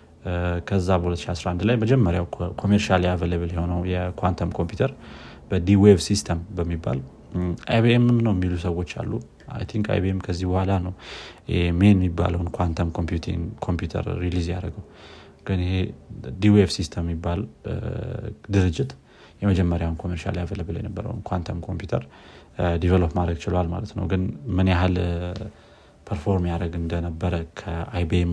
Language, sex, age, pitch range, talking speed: Amharic, male, 30-49, 85-100 Hz, 100 wpm